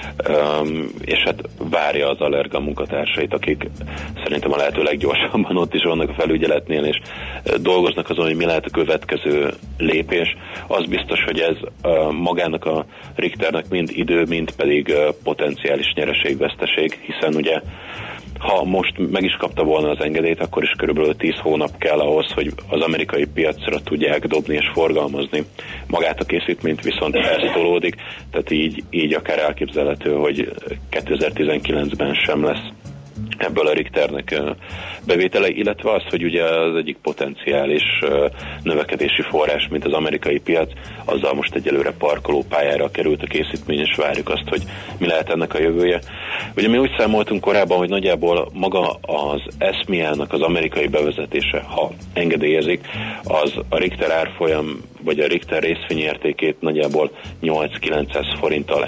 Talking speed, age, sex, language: 140 wpm, 30-49, male, Hungarian